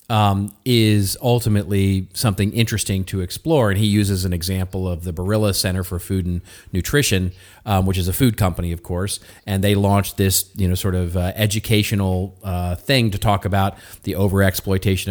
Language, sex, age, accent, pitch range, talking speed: English, male, 40-59, American, 90-105 Hz, 180 wpm